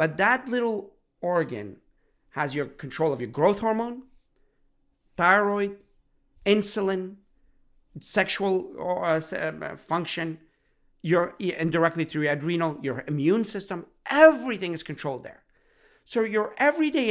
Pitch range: 145-205 Hz